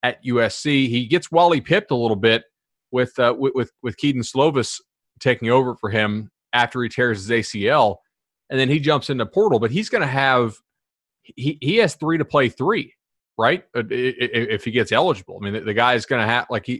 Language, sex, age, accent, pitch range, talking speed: English, male, 30-49, American, 110-145 Hz, 205 wpm